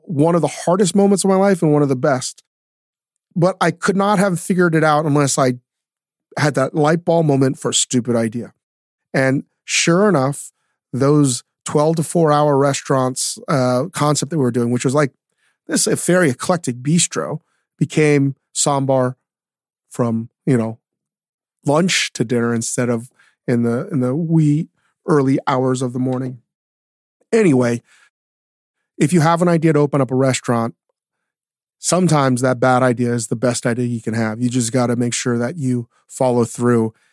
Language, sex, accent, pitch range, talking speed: English, male, American, 125-165 Hz, 175 wpm